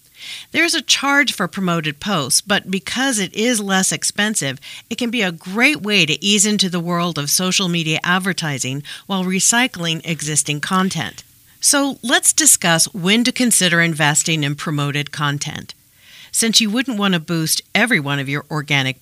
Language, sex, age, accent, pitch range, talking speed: English, female, 50-69, American, 155-210 Hz, 165 wpm